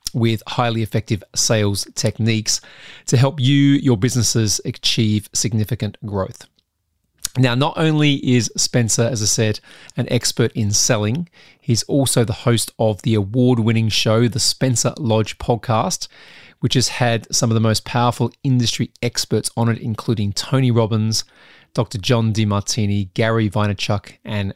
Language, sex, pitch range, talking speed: English, male, 105-125 Hz, 140 wpm